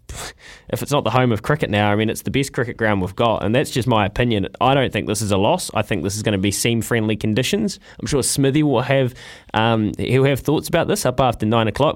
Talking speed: 265 wpm